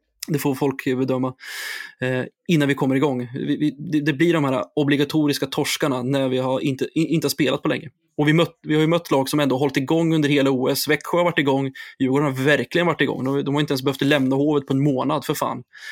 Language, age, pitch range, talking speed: Swedish, 20-39, 135-155 Hz, 240 wpm